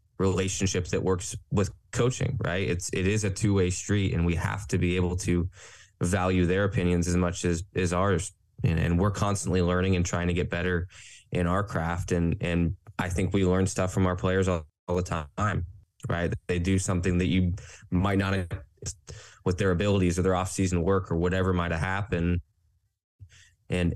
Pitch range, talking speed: 85-95 Hz, 190 wpm